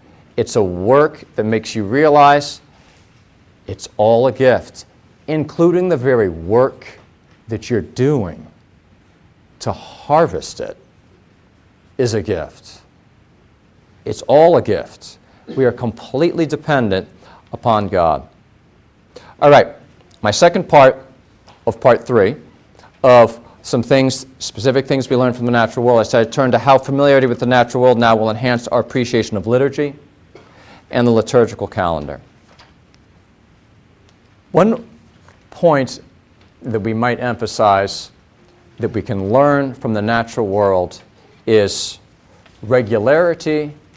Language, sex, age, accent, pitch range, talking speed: English, male, 40-59, American, 105-135 Hz, 125 wpm